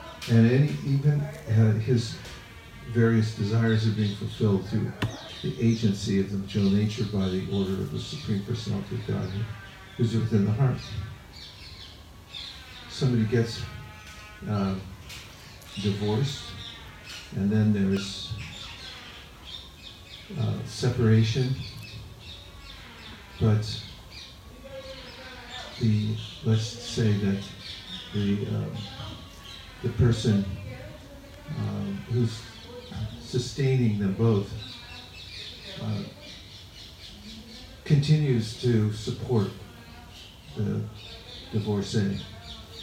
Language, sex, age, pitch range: English, male, 50-69, 100-115 Hz